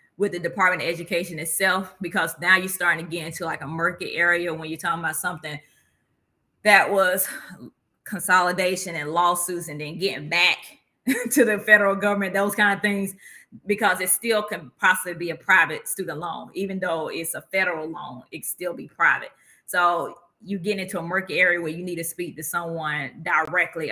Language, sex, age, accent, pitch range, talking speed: English, female, 20-39, American, 165-190 Hz, 185 wpm